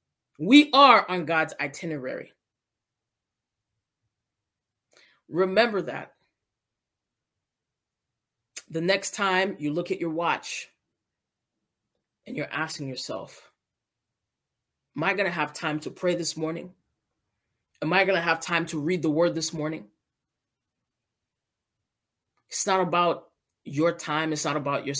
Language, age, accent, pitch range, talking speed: English, 30-49, American, 115-175 Hz, 115 wpm